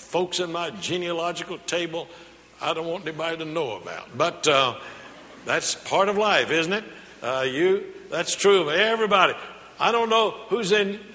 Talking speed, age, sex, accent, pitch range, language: 160 wpm, 60-79, male, American, 165-210 Hz, English